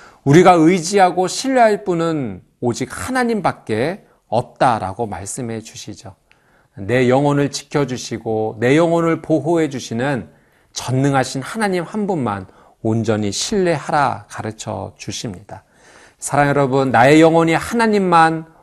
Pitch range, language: 110-165 Hz, Korean